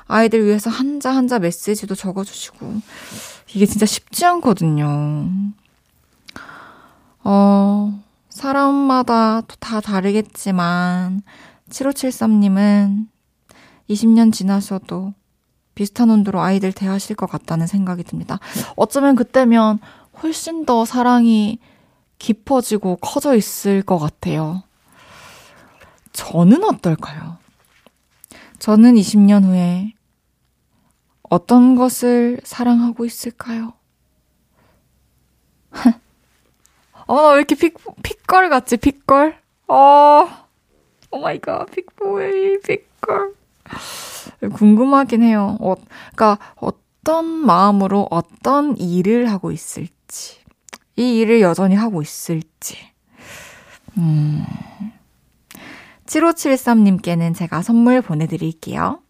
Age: 20-39